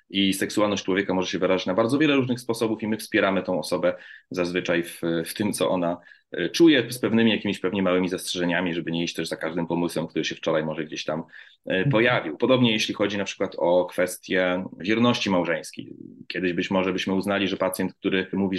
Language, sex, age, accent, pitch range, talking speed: Polish, male, 30-49, native, 90-120 Hz, 195 wpm